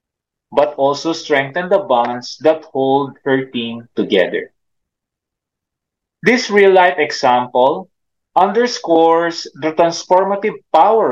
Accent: Filipino